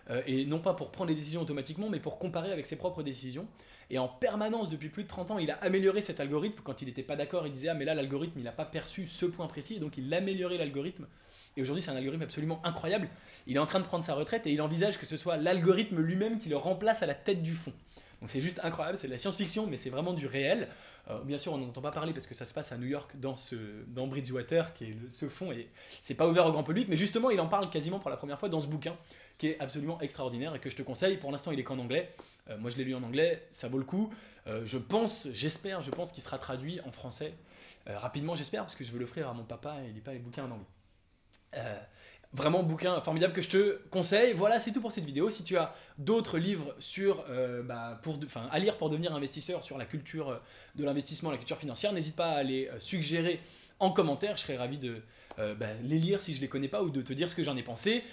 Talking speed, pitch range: 270 wpm, 135-180 Hz